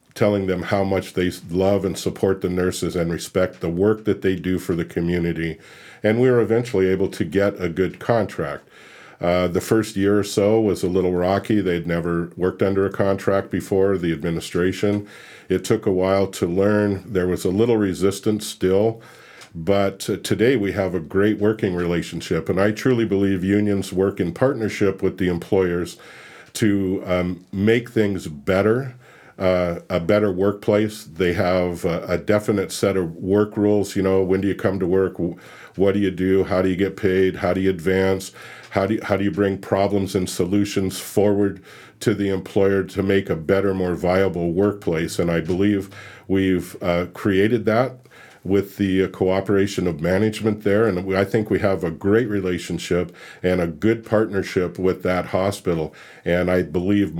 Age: 50-69